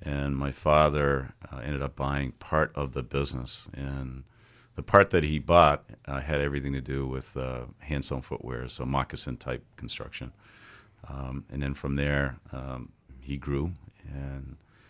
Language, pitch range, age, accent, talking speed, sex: English, 65-75 Hz, 40-59, American, 160 wpm, male